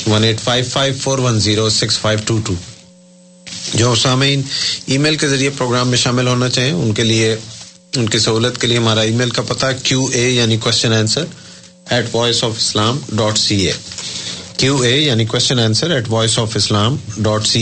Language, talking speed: Urdu, 135 wpm